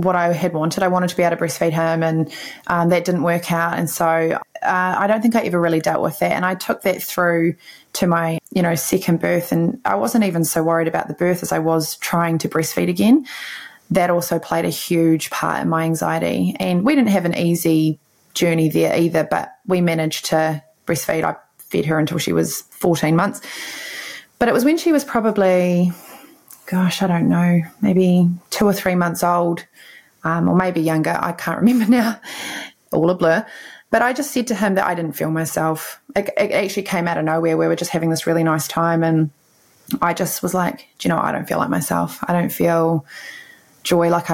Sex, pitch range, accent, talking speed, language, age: female, 160-190 Hz, Australian, 215 wpm, English, 20-39